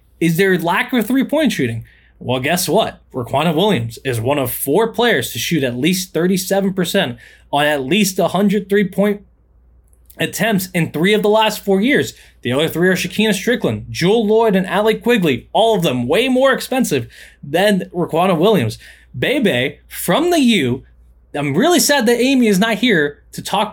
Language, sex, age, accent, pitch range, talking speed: English, male, 20-39, American, 140-215 Hz, 170 wpm